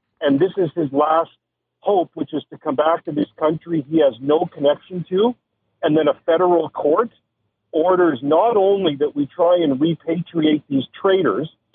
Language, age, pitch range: English, 50-69, 145-185 Hz